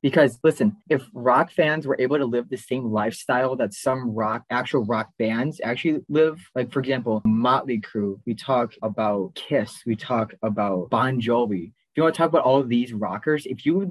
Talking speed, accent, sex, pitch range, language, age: 205 wpm, American, male, 110-145 Hz, English, 20-39